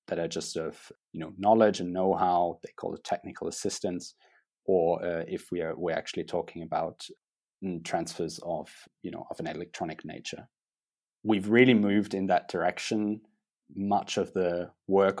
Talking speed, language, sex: 165 wpm, English, male